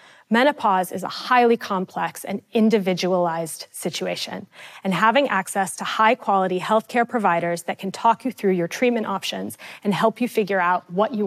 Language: Arabic